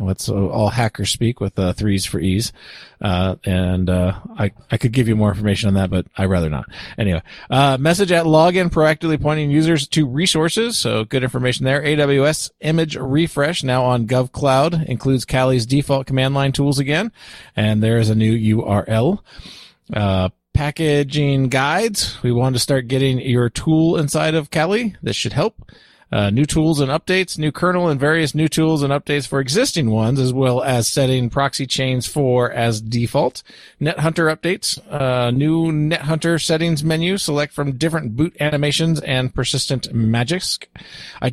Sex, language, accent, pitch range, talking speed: male, English, American, 110-155 Hz, 165 wpm